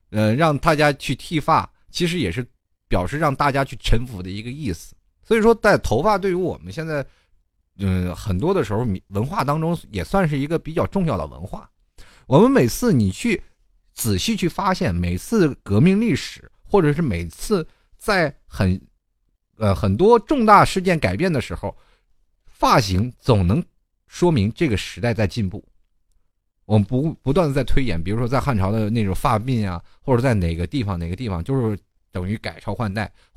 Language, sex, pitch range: Chinese, male, 95-140 Hz